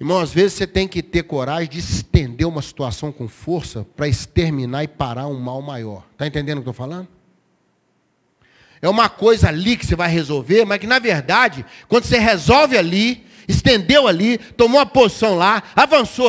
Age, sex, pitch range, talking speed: 40-59, male, 155-255 Hz, 185 wpm